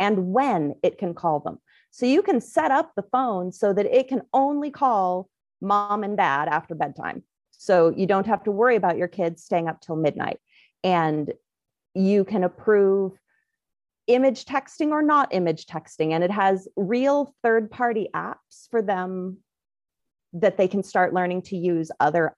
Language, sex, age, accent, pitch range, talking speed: English, female, 30-49, American, 180-240 Hz, 170 wpm